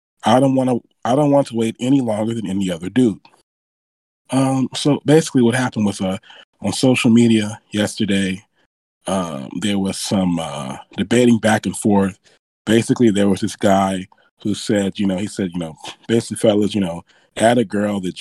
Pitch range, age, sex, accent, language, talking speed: 100-120 Hz, 20-39, male, American, English, 180 wpm